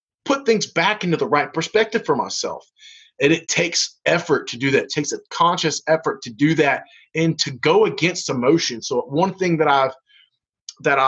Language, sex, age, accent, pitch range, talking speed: English, male, 30-49, American, 145-210 Hz, 190 wpm